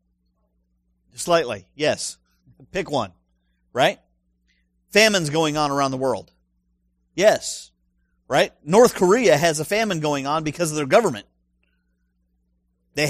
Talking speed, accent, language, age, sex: 115 wpm, American, English, 40-59, male